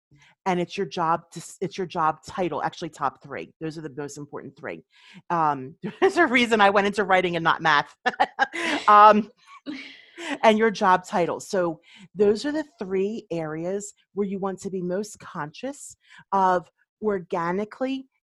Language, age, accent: English, 40-59, American